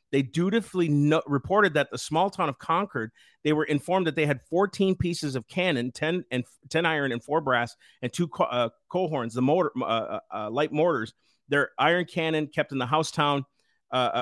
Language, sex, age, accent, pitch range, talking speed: English, male, 40-59, American, 135-175 Hz, 200 wpm